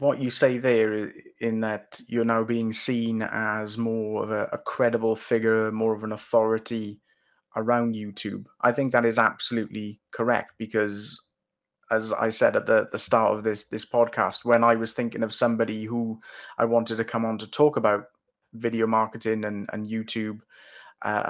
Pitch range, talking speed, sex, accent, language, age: 110-120 Hz, 175 wpm, male, British, English, 30-49